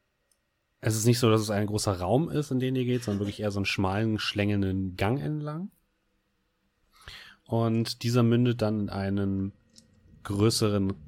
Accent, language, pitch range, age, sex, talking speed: German, German, 100-120 Hz, 30-49, male, 160 wpm